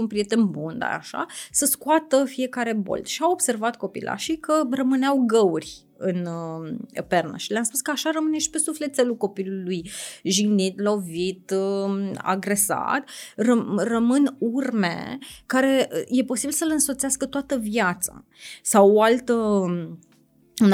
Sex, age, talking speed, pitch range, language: female, 30-49, 140 wpm, 190-260 Hz, Romanian